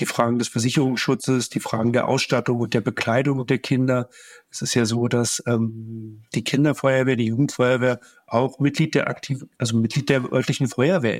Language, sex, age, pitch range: German, male, 50-69, 115-140 Hz